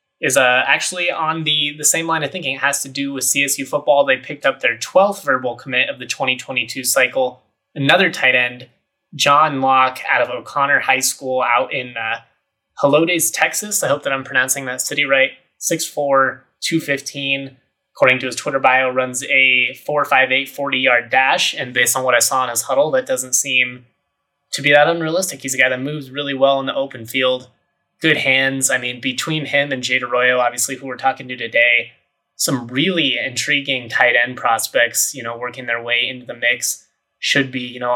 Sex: male